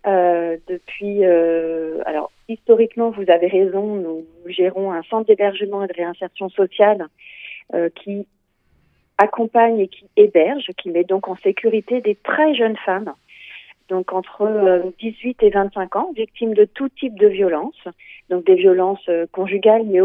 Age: 40-59